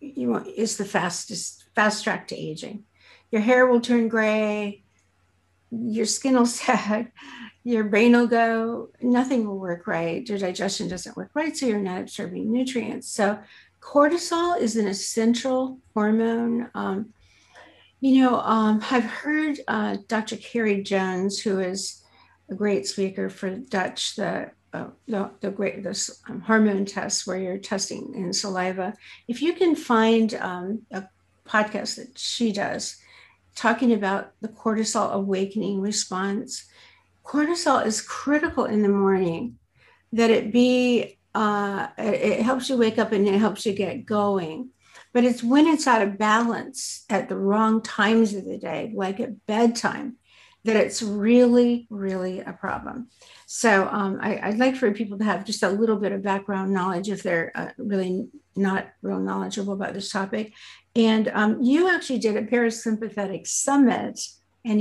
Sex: female